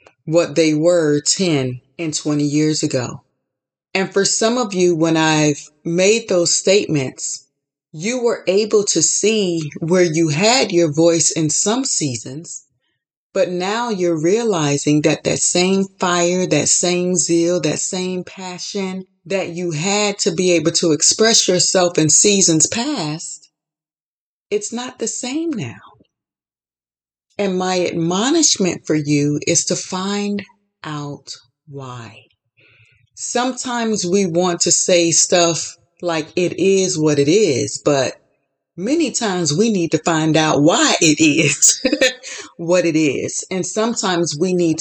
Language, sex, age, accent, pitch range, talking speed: English, female, 30-49, American, 150-190 Hz, 135 wpm